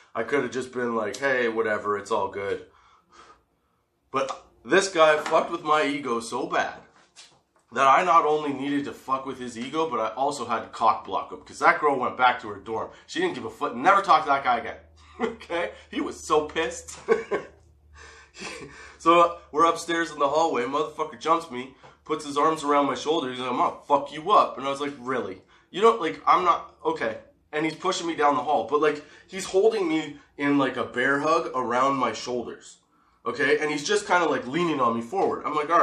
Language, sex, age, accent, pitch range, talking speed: English, male, 20-39, American, 125-160 Hz, 215 wpm